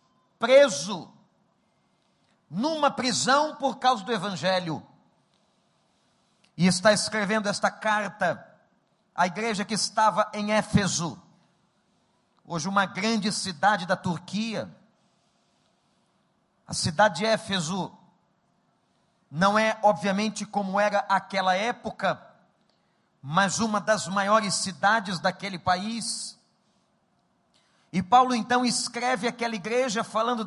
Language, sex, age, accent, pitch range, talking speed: Portuguese, male, 50-69, Brazilian, 195-240 Hz, 95 wpm